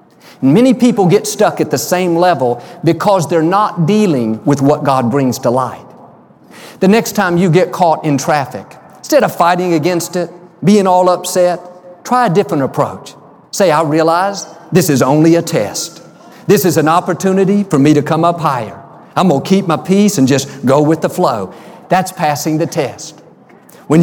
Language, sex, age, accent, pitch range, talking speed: English, male, 50-69, American, 150-185 Hz, 180 wpm